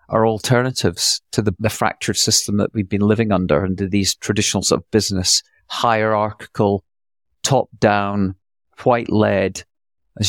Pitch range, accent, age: 100-120 Hz, British, 40-59